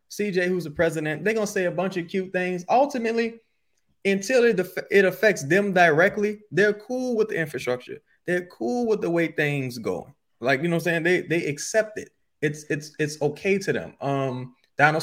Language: English